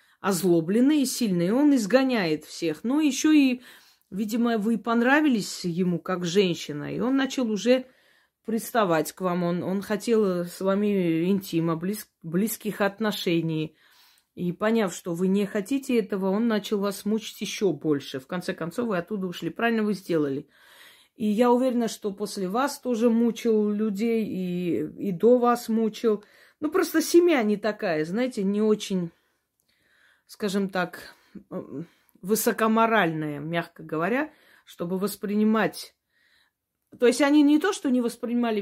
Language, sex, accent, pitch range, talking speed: Russian, female, native, 180-240 Hz, 140 wpm